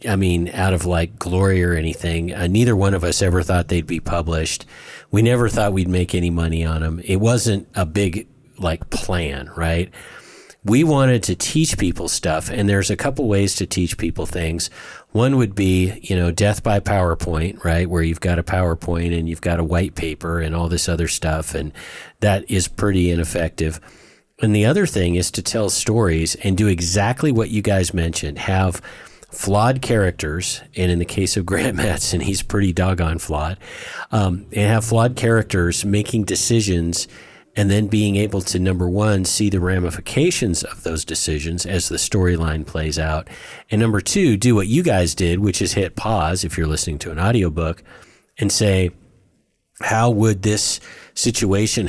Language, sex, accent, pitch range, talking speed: English, male, American, 85-105 Hz, 180 wpm